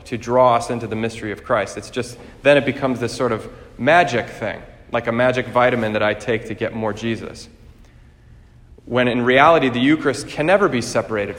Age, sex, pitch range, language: 30-49, male, 110-135 Hz, English